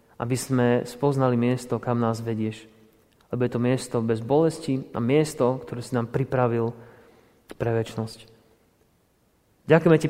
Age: 30-49